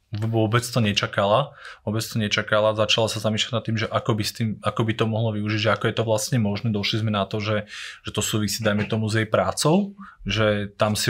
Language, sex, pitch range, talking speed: Slovak, male, 105-120 Hz, 215 wpm